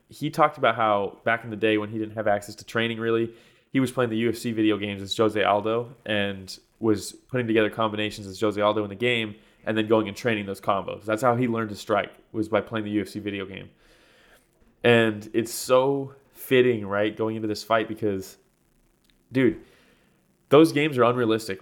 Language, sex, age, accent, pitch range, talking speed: English, male, 20-39, American, 105-125 Hz, 200 wpm